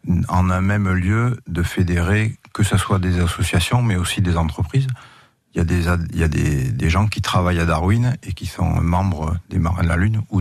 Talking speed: 200 wpm